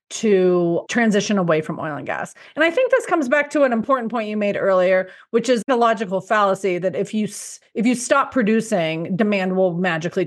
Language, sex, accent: English, female, American